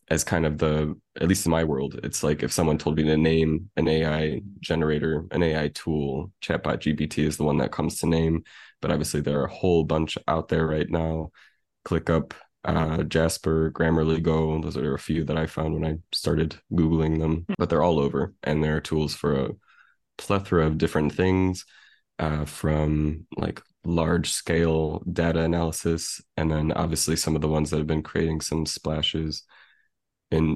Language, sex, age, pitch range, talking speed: English, male, 20-39, 75-85 Hz, 185 wpm